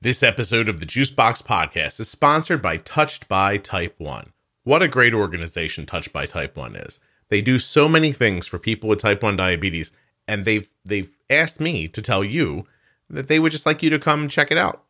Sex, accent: male, American